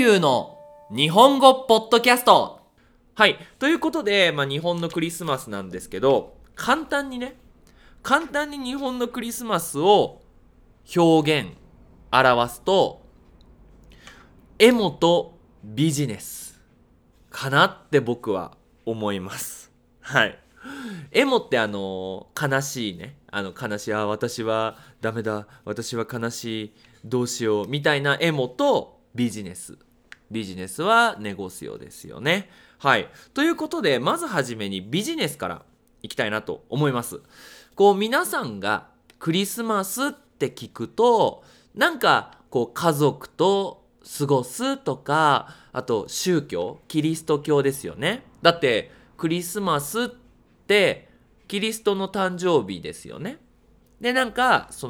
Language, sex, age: Japanese, male, 20-39